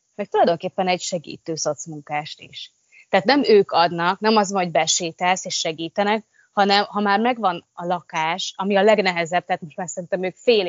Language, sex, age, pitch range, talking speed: Hungarian, female, 20-39, 170-205 Hz, 170 wpm